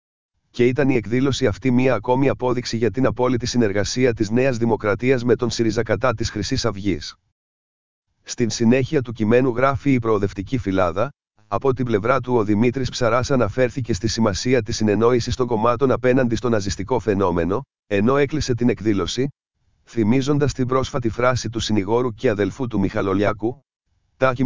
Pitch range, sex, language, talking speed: 110-130 Hz, male, Greek, 150 wpm